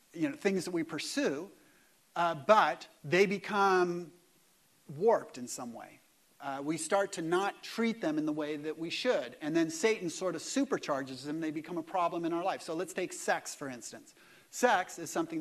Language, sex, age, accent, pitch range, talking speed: English, male, 40-59, American, 165-240 Hz, 195 wpm